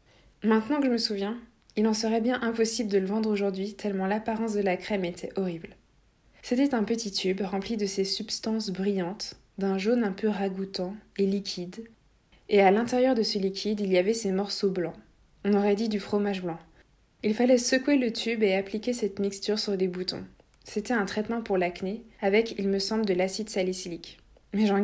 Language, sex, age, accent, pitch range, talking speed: French, female, 20-39, French, 195-225 Hz, 195 wpm